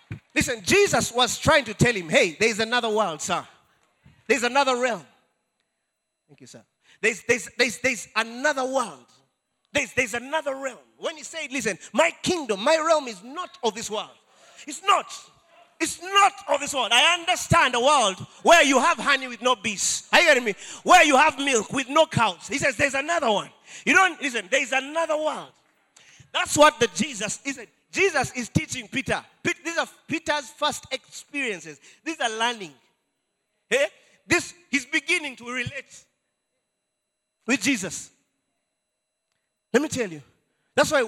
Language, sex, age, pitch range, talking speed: English, male, 30-49, 215-300 Hz, 165 wpm